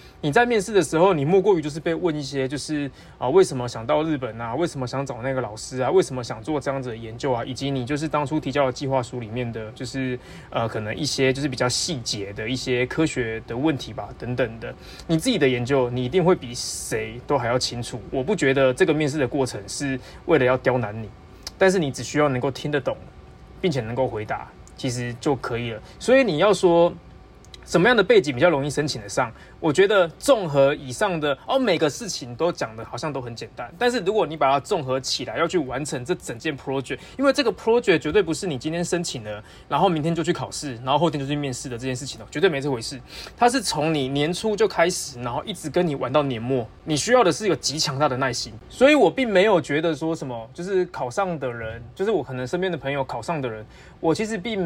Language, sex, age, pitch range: Chinese, male, 20-39, 125-170 Hz